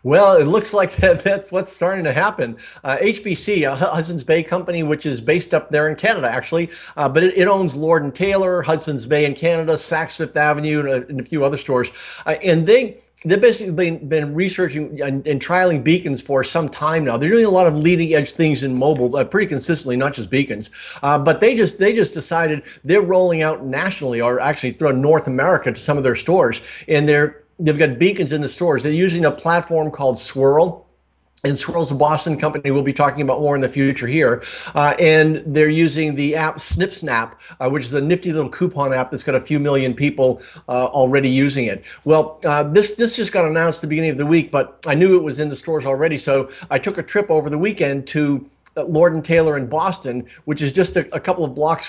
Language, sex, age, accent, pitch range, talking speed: English, male, 50-69, American, 140-170 Hz, 230 wpm